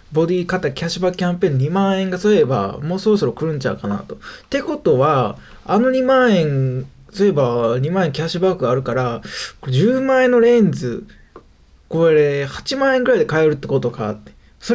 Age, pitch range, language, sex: 20-39, 150-230 Hz, Japanese, male